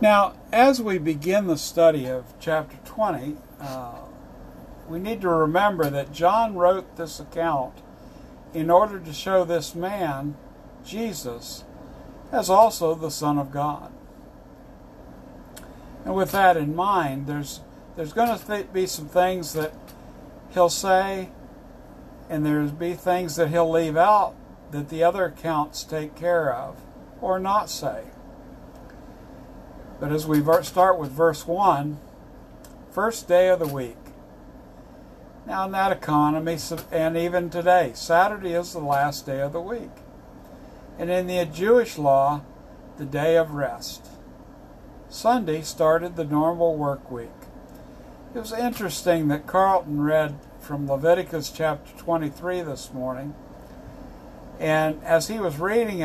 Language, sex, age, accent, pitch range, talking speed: English, male, 60-79, American, 150-185 Hz, 135 wpm